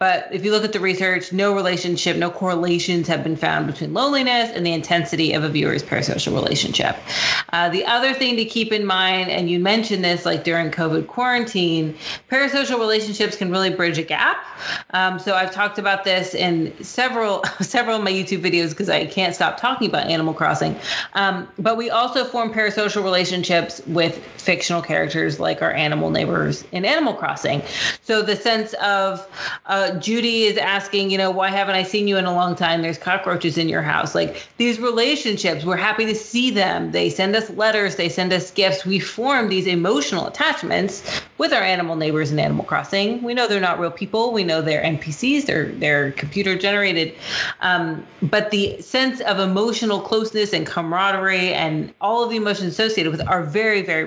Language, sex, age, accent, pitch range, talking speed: English, female, 30-49, American, 175-215 Hz, 190 wpm